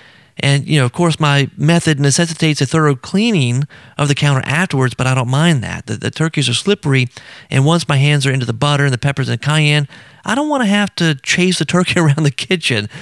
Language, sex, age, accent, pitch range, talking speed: English, male, 40-59, American, 130-170 Hz, 230 wpm